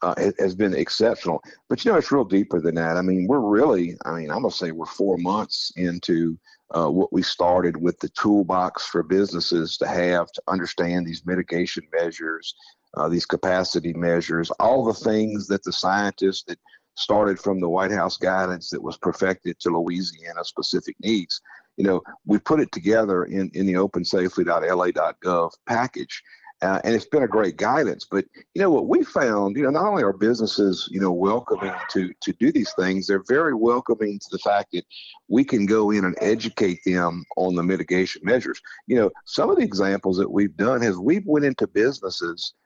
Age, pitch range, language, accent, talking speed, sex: 50-69, 85-105 Hz, English, American, 190 wpm, male